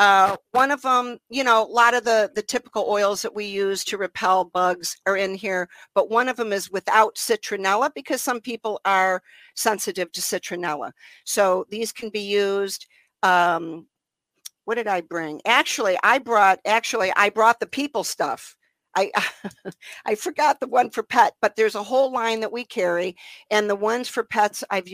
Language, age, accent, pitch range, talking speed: English, 50-69, American, 200-240 Hz, 185 wpm